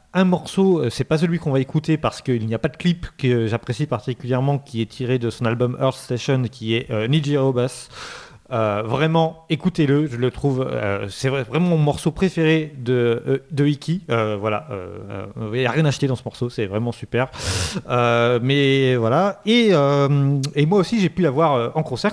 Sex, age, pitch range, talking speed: male, 30-49, 120-155 Hz, 205 wpm